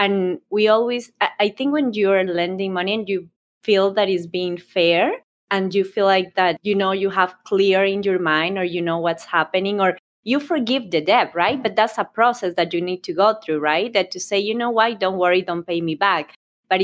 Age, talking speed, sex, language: 20-39, 230 wpm, female, English